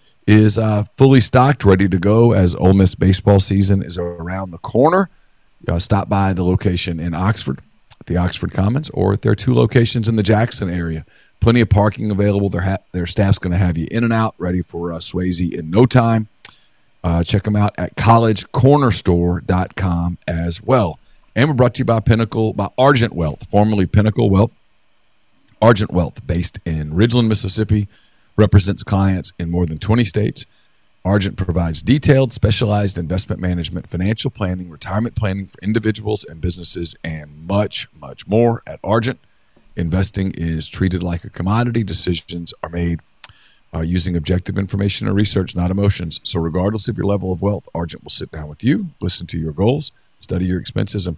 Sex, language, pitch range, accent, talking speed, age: male, English, 90-110 Hz, American, 175 wpm, 40-59